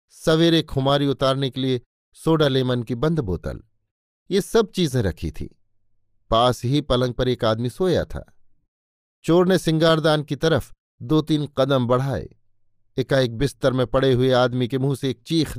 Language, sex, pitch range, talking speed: Hindi, male, 115-150 Hz, 165 wpm